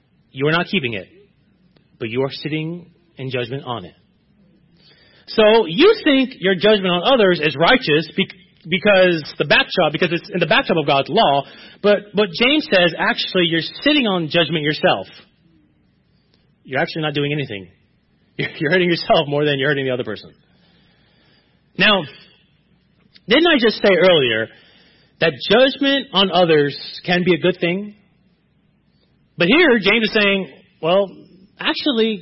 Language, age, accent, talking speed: English, 30-49, American, 150 wpm